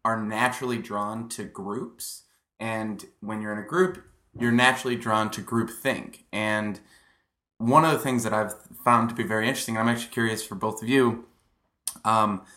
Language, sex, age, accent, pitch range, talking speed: English, male, 20-39, American, 105-125 Hz, 175 wpm